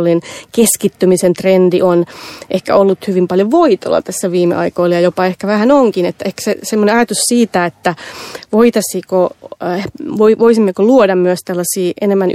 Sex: female